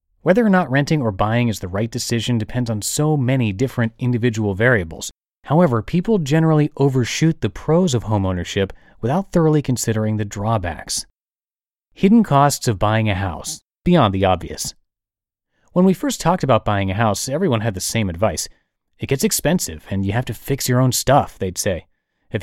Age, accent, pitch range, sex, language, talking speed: 30-49, American, 105-145 Hz, male, English, 175 wpm